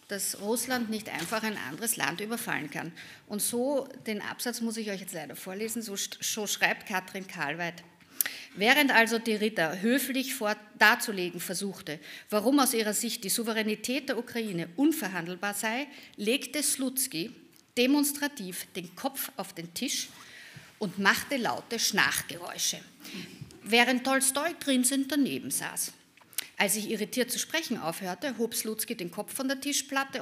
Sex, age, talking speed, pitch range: female, 50-69, 145 wpm, 190-255 Hz